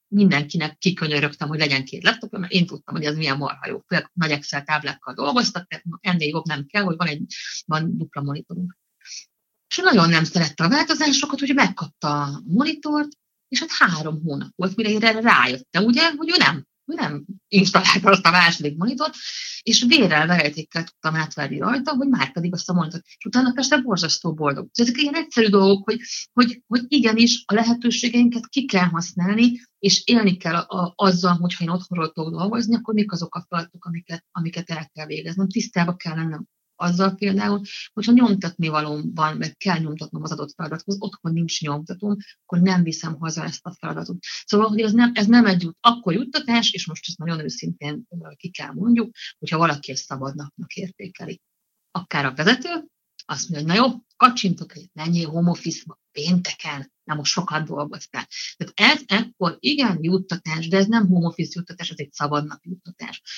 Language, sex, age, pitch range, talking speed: Hungarian, female, 50-69, 160-220 Hz, 175 wpm